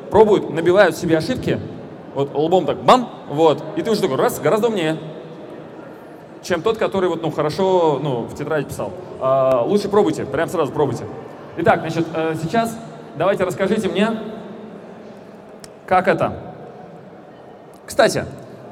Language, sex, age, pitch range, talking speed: Russian, male, 20-39, 150-190 Hz, 130 wpm